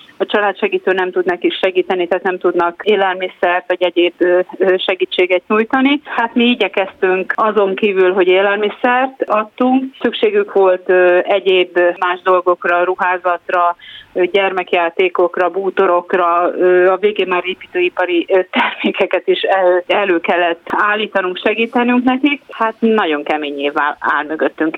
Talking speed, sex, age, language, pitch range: 115 wpm, female, 30-49, Hungarian, 170-200 Hz